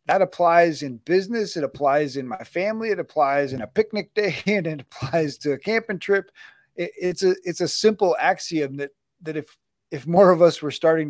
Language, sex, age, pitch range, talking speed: English, male, 40-59, 135-170 Hz, 205 wpm